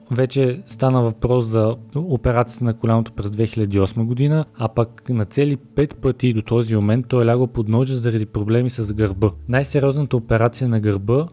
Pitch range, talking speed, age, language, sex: 110-130 Hz, 170 wpm, 20-39, Bulgarian, male